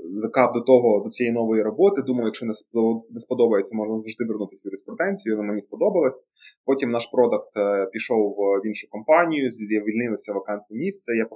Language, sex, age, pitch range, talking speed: Ukrainian, male, 20-39, 110-135 Hz, 165 wpm